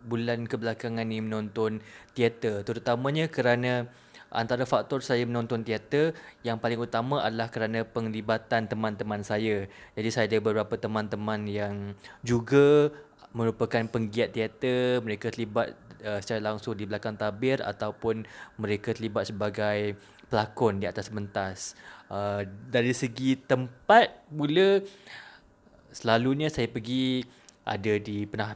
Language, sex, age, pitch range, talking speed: Malay, male, 20-39, 105-125 Hz, 120 wpm